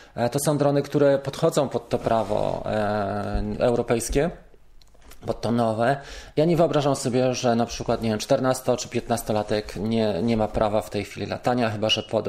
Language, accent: Polish, native